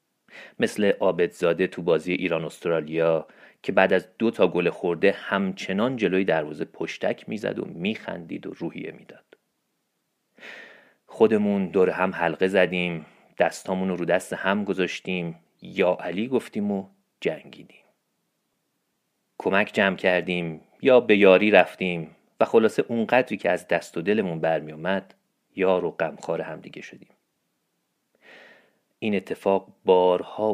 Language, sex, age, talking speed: Persian, male, 40-59, 125 wpm